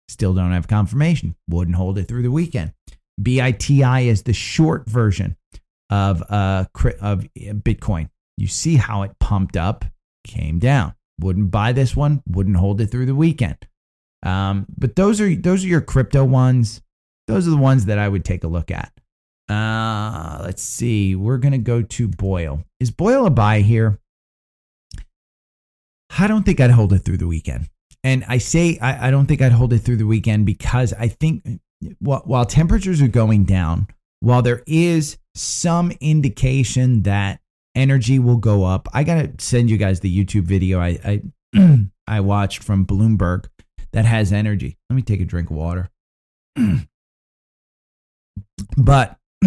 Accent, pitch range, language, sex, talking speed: American, 95-130 Hz, English, male, 165 wpm